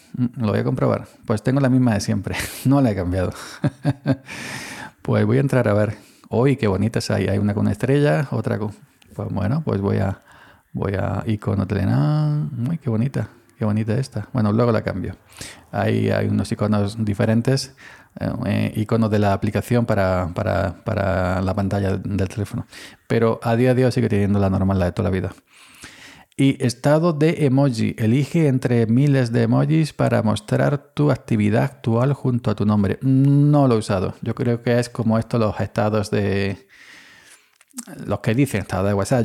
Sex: male